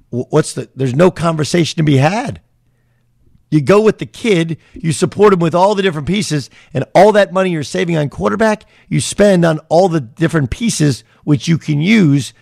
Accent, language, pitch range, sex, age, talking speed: American, English, 120-150 Hz, male, 50-69, 195 wpm